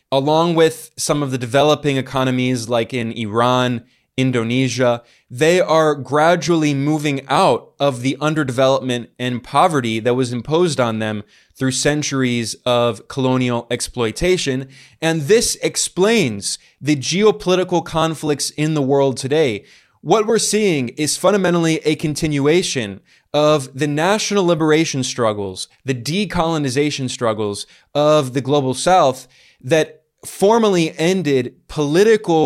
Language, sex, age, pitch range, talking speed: English, male, 20-39, 125-160 Hz, 120 wpm